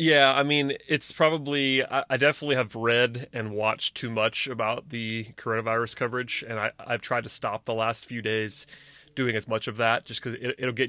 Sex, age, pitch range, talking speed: male, 30-49, 110-135 Hz, 205 wpm